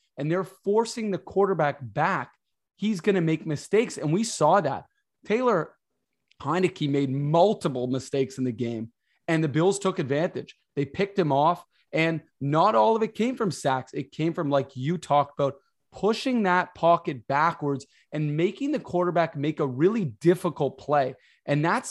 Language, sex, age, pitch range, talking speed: English, male, 20-39, 140-185 Hz, 170 wpm